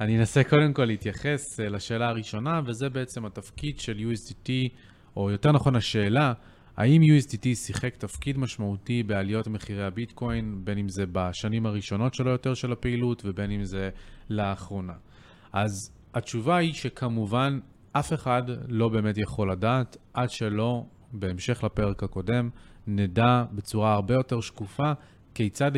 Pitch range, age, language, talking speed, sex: 100-135 Hz, 30-49, Hebrew, 135 wpm, male